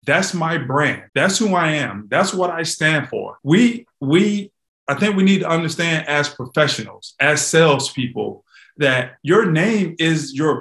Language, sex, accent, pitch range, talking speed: English, male, American, 135-165 Hz, 165 wpm